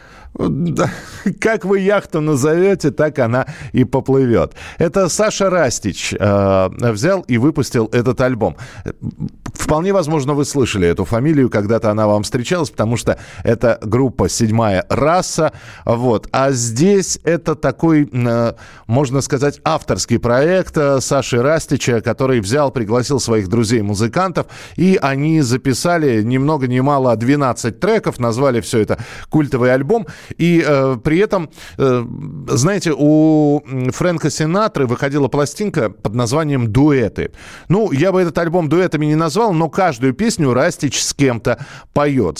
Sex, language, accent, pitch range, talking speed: male, Russian, native, 120-160 Hz, 130 wpm